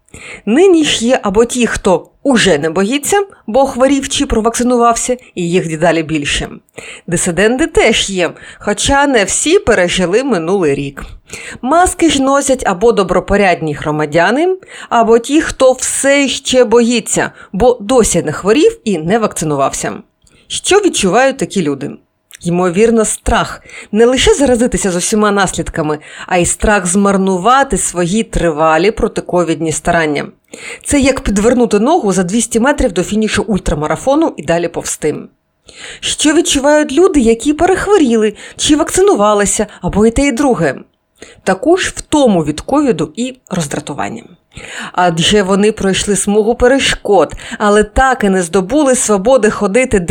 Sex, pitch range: female, 180-265 Hz